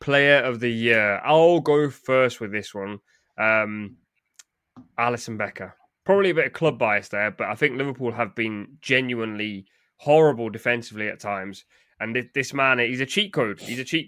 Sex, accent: male, British